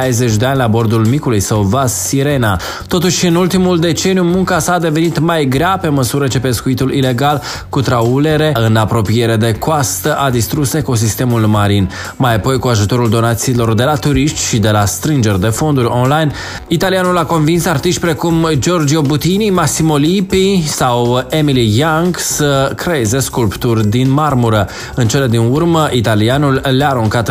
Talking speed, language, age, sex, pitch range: 160 wpm, Romanian, 20-39, male, 115-150 Hz